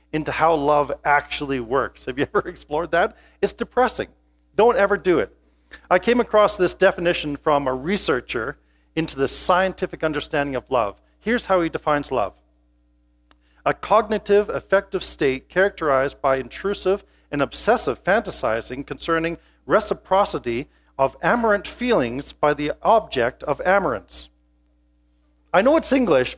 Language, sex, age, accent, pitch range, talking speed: English, male, 40-59, American, 120-185 Hz, 135 wpm